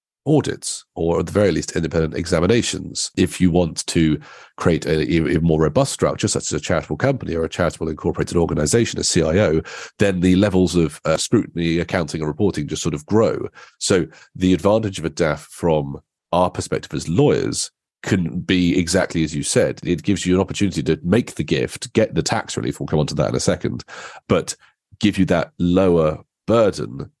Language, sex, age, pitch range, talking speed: English, male, 40-59, 80-95 Hz, 190 wpm